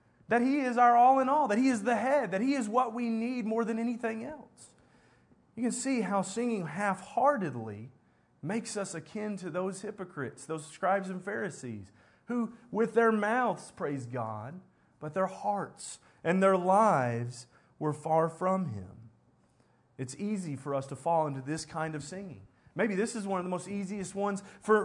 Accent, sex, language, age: American, male, English, 30-49